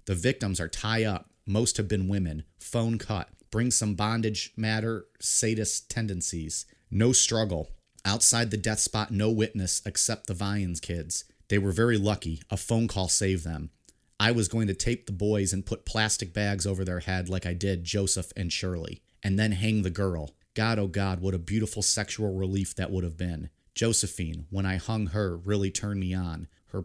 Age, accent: 30-49, American